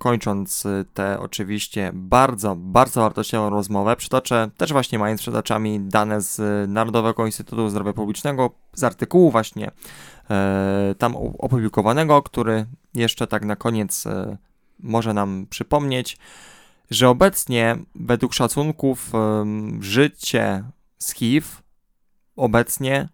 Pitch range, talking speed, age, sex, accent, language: 105-130 Hz, 105 wpm, 20-39, male, native, Polish